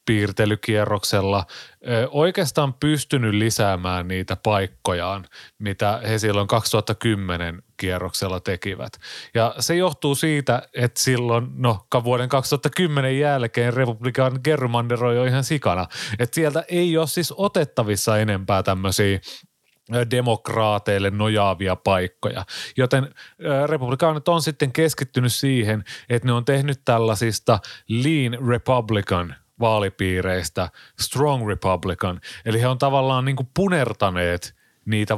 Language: Finnish